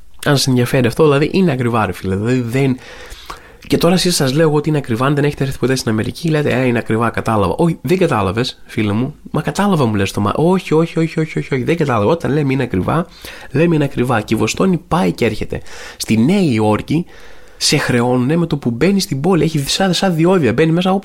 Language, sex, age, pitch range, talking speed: Greek, male, 20-39, 120-160 Hz, 215 wpm